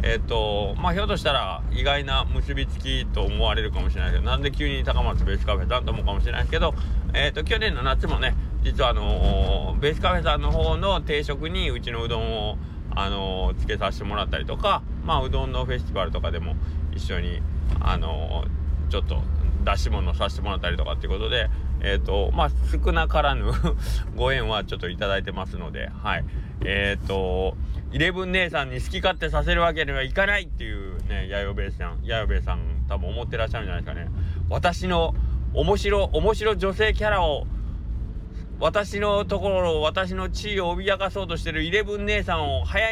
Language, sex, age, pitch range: Japanese, male, 20-39, 75-100 Hz